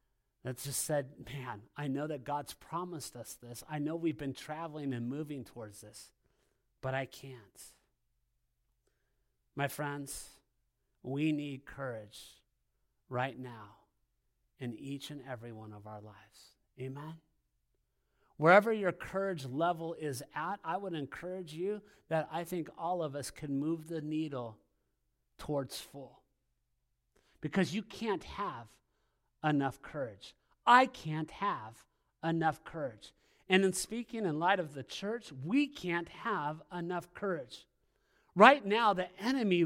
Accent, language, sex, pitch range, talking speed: American, English, male, 135-200 Hz, 135 wpm